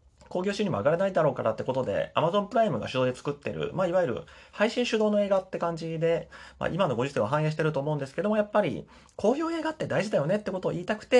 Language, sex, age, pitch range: Japanese, male, 30-49, 140-220 Hz